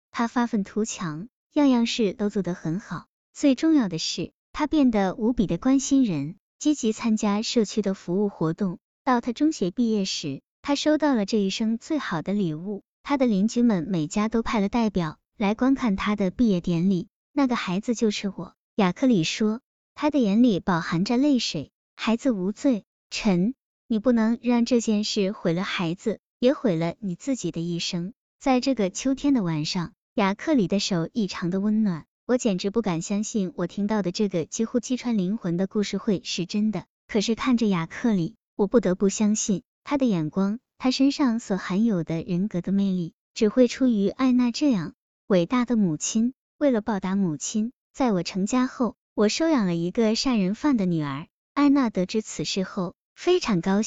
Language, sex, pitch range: Chinese, male, 190-245 Hz